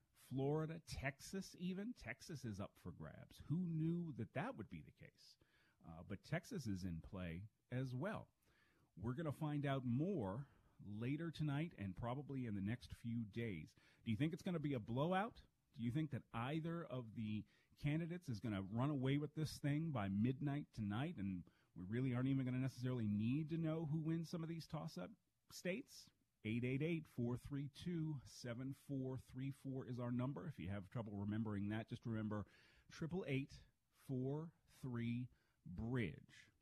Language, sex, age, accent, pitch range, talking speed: English, male, 40-59, American, 110-150 Hz, 160 wpm